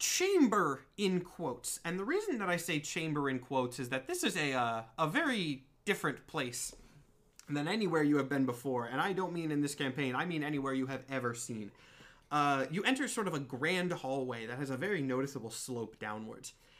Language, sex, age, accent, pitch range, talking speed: English, male, 30-49, American, 125-165 Hz, 205 wpm